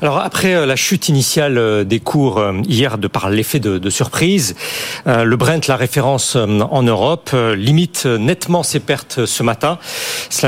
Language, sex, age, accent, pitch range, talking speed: French, male, 40-59, French, 135-190 Hz, 155 wpm